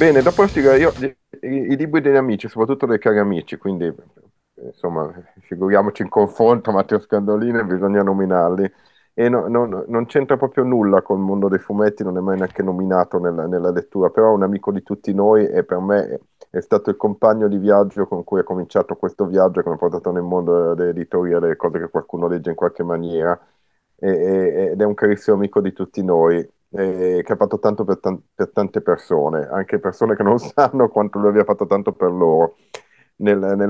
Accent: native